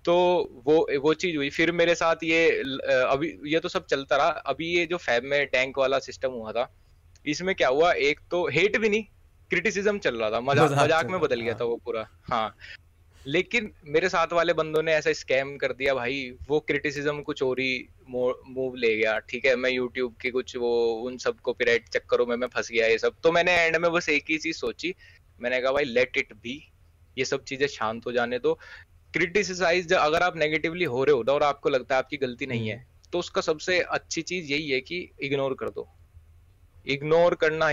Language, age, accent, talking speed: Hindi, 20-39, native, 150 wpm